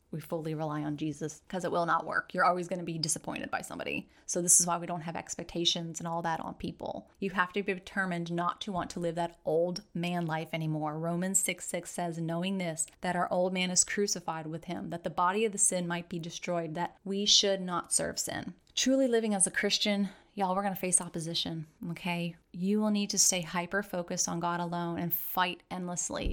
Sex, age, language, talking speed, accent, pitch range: female, 30-49, English, 225 wpm, American, 170-205 Hz